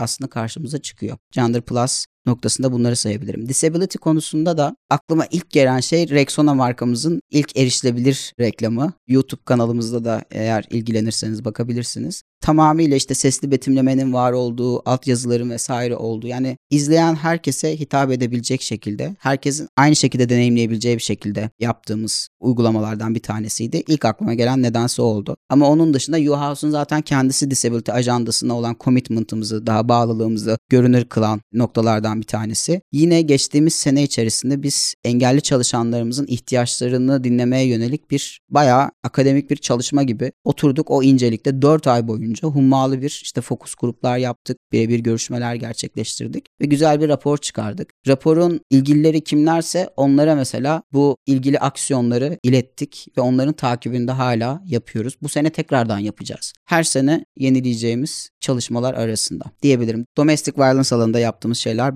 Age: 30-49